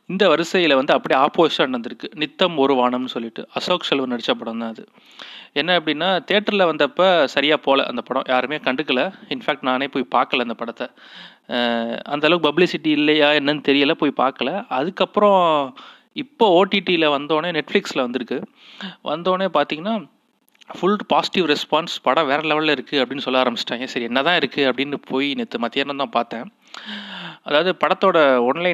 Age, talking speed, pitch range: 30-49, 145 wpm, 130-170 Hz